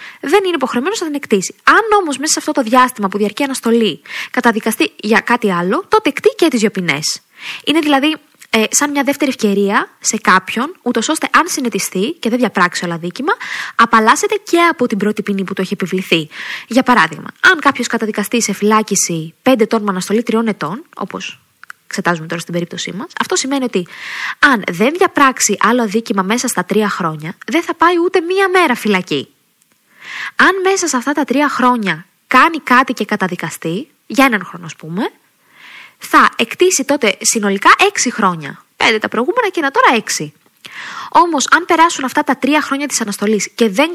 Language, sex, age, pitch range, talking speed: Greek, female, 20-39, 200-300 Hz, 175 wpm